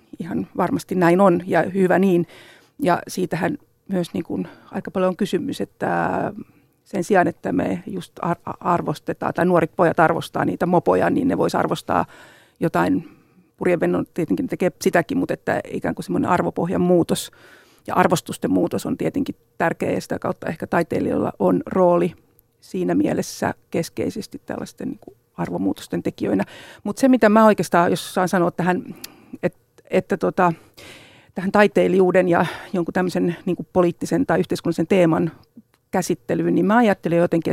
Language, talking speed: Finnish, 145 wpm